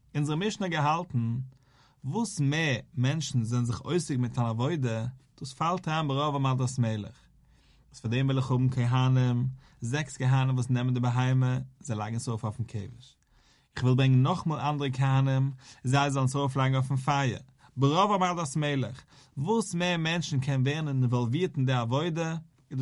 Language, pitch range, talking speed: English, 125-150 Hz, 170 wpm